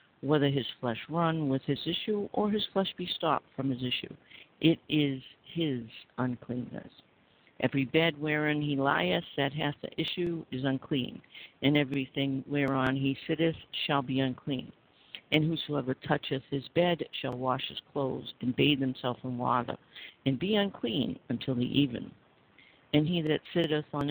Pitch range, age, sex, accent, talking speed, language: 135-165 Hz, 50-69, female, American, 155 wpm, English